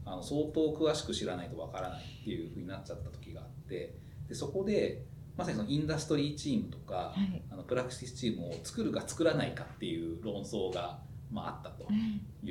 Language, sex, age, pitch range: Japanese, male, 40-59, 125-190 Hz